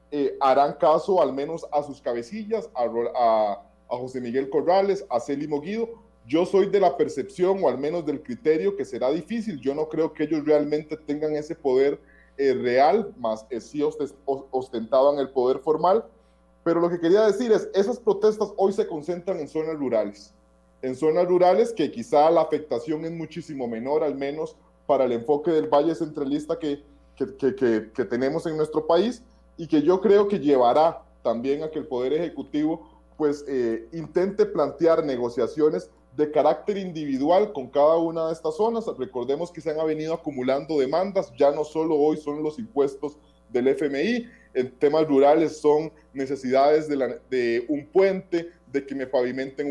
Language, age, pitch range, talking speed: Spanish, 30-49, 140-180 Hz, 175 wpm